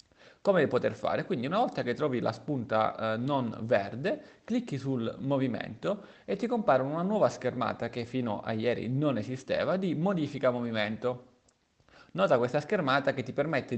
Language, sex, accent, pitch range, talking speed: Italian, male, native, 115-150 Hz, 155 wpm